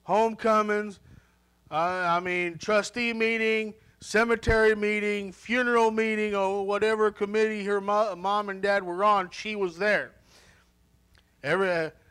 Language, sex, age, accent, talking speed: English, male, 50-69, American, 125 wpm